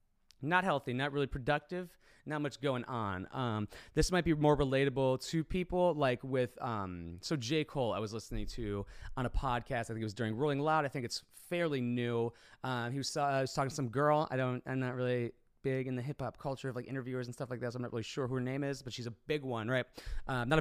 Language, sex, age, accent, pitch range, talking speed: English, male, 30-49, American, 110-150 Hz, 255 wpm